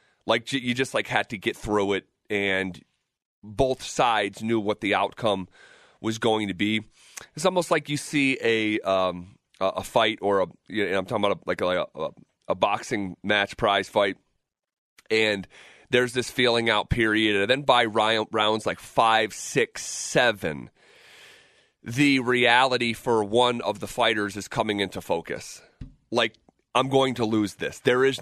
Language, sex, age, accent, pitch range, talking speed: English, male, 30-49, American, 105-125 Hz, 170 wpm